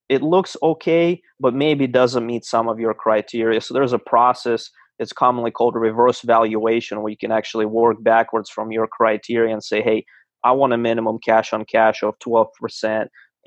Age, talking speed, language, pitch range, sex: 30-49, 185 wpm, English, 110-125 Hz, male